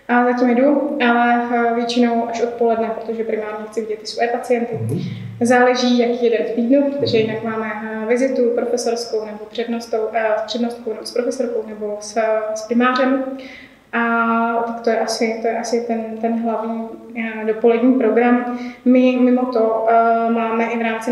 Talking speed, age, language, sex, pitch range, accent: 150 wpm, 20-39, Czech, female, 225-245 Hz, native